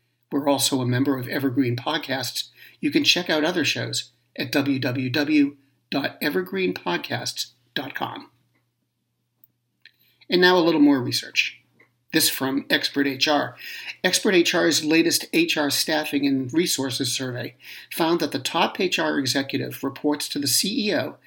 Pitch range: 135-155 Hz